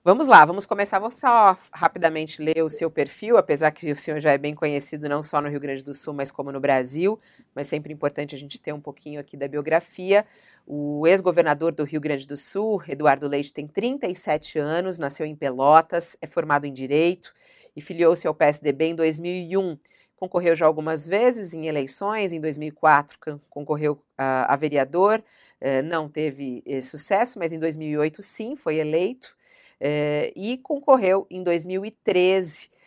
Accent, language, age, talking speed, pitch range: Brazilian, Portuguese, 40-59, 170 wpm, 150-195 Hz